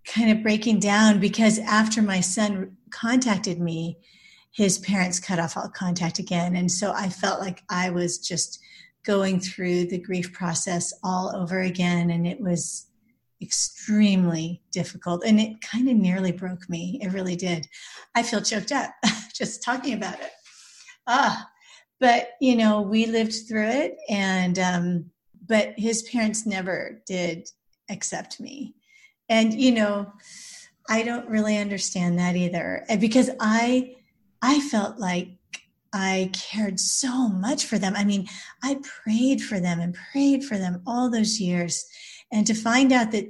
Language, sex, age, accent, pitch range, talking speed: English, female, 40-59, American, 185-235 Hz, 150 wpm